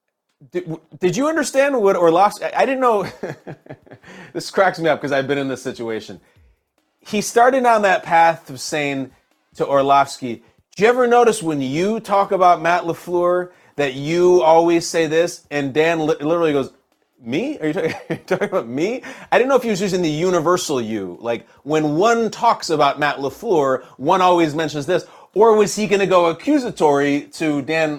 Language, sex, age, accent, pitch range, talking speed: English, male, 30-49, American, 135-190 Hz, 180 wpm